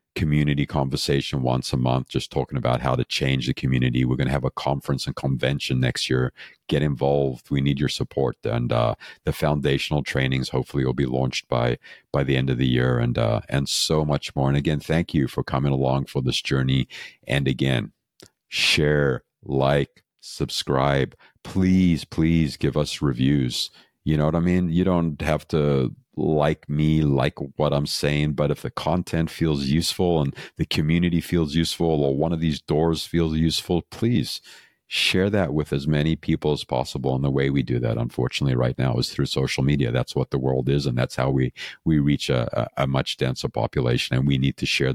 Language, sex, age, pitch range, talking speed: English, male, 50-69, 65-80 Hz, 195 wpm